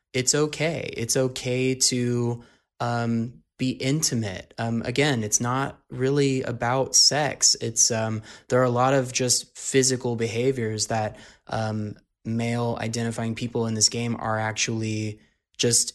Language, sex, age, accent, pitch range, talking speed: English, male, 20-39, American, 110-125 Hz, 135 wpm